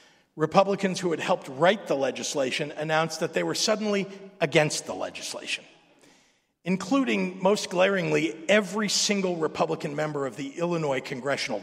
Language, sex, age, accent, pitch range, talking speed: English, male, 50-69, American, 165-210 Hz, 135 wpm